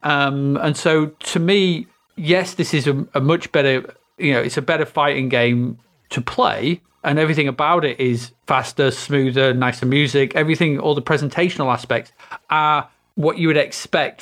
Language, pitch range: English, 135-165 Hz